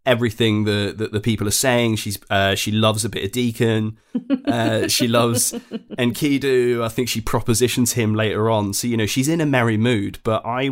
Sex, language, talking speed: male, English, 200 wpm